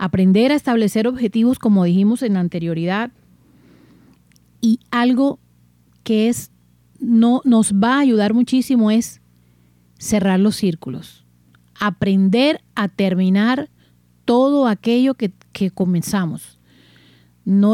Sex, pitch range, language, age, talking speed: female, 175-230 Hz, Spanish, 40-59, 100 wpm